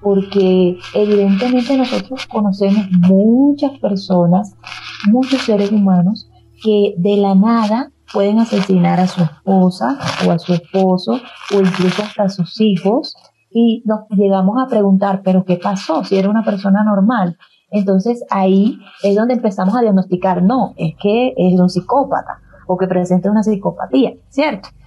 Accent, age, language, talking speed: American, 30-49, Spanish, 145 wpm